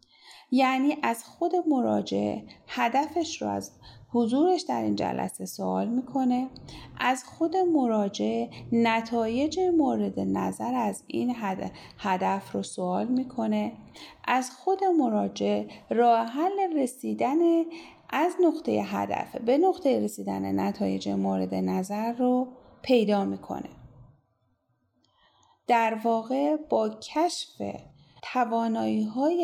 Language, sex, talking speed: Persian, female, 95 wpm